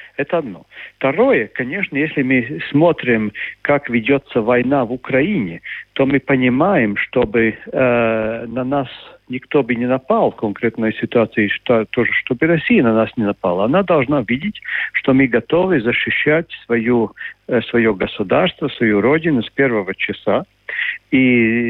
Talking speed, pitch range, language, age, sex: 145 wpm, 115-145 Hz, Russian, 50-69, male